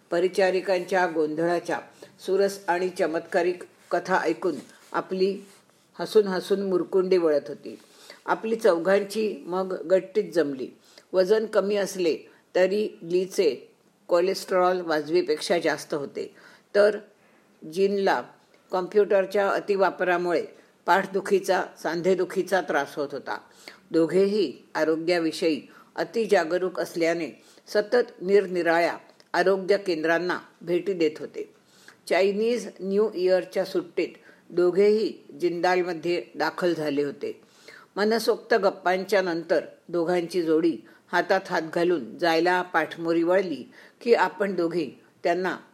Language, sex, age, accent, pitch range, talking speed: Marathi, female, 50-69, native, 170-200 Hz, 95 wpm